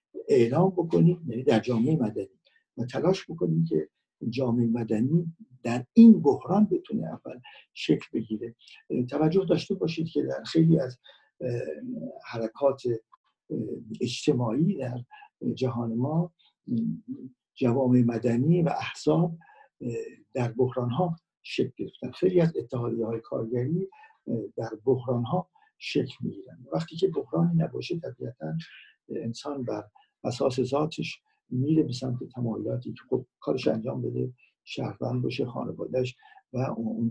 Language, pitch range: Persian, 120-180 Hz